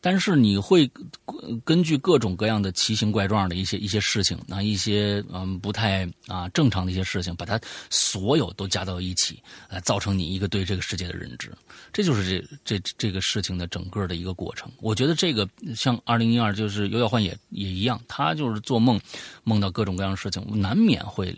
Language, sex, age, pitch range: Chinese, male, 30-49, 100-155 Hz